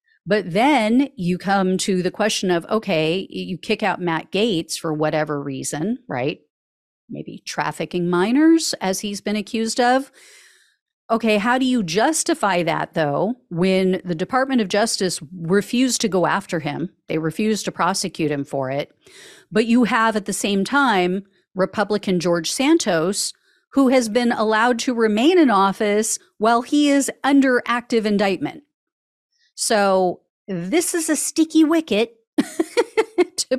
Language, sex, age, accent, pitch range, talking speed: English, female, 40-59, American, 180-265 Hz, 145 wpm